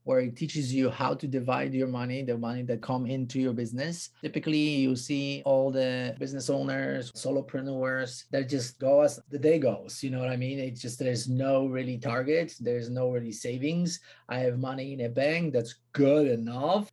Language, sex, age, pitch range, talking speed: English, male, 30-49, 125-150 Hz, 195 wpm